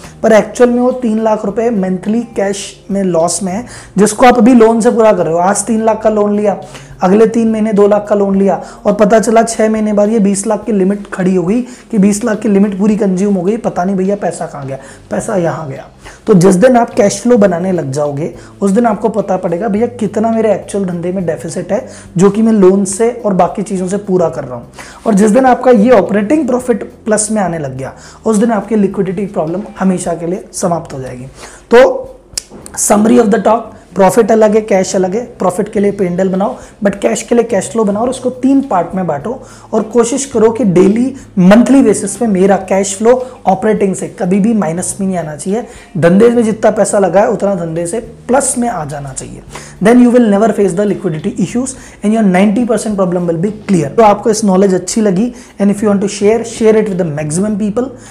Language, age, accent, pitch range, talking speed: Hindi, 20-39, native, 185-225 Hz, 225 wpm